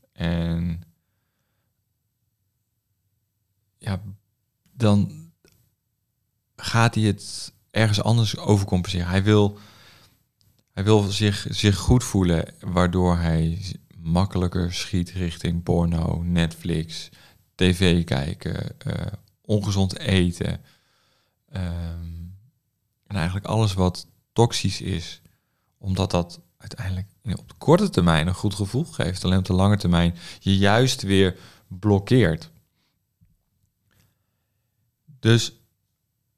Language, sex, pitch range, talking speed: Dutch, male, 90-110 Hz, 95 wpm